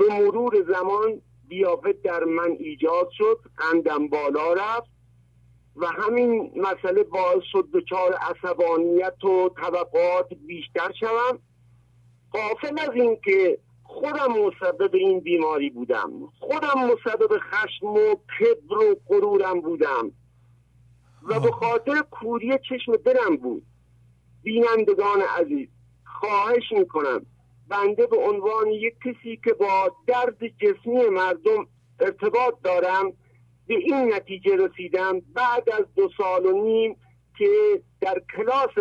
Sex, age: male, 50-69